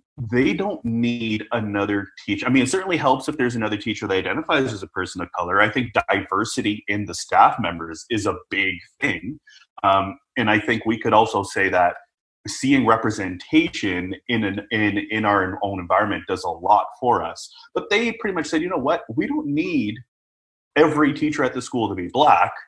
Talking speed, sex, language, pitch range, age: 195 wpm, male, English, 100-130 Hz, 30-49